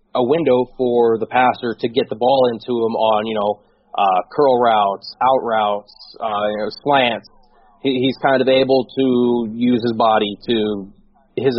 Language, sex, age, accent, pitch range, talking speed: English, male, 20-39, American, 110-135 Hz, 175 wpm